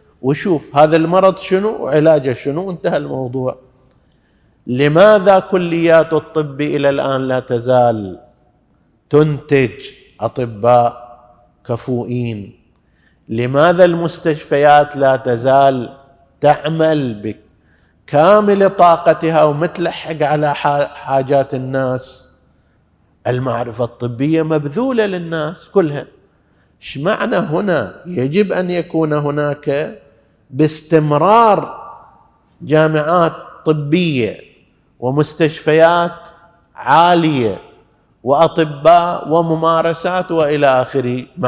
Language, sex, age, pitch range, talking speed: Arabic, male, 50-69, 130-170 Hz, 70 wpm